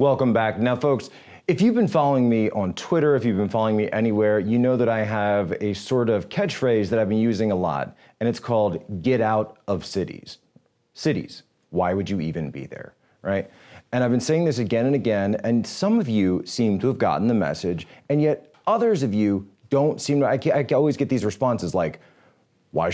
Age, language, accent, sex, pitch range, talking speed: 30-49, English, American, male, 105-140 Hz, 215 wpm